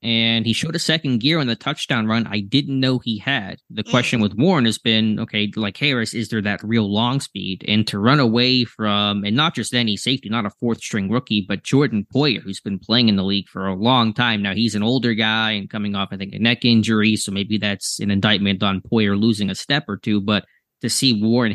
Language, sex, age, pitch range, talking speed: English, male, 20-39, 105-120 Hz, 240 wpm